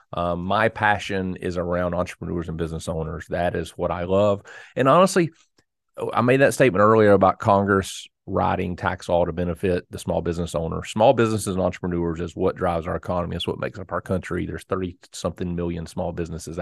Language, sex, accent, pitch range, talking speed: English, male, American, 85-105 Hz, 190 wpm